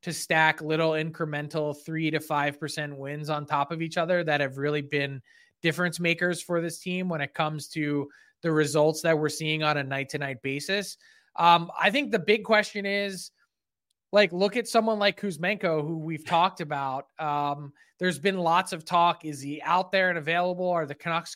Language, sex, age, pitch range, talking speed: English, male, 20-39, 155-185 Hz, 190 wpm